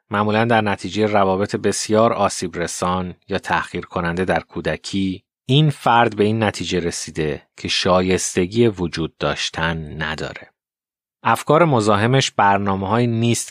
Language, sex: Persian, male